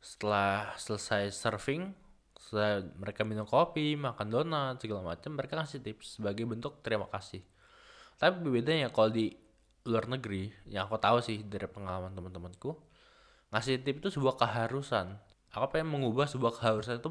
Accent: native